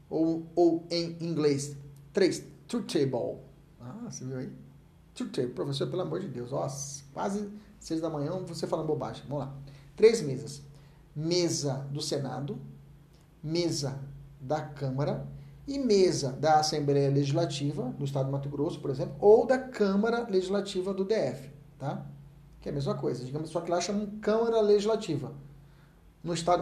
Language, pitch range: Portuguese, 140-195 Hz